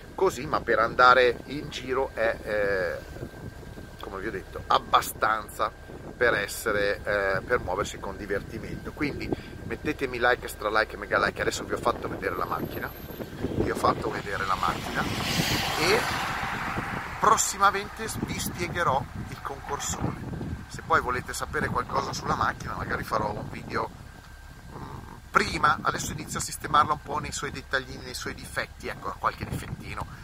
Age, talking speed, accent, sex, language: 40-59, 145 wpm, native, male, Italian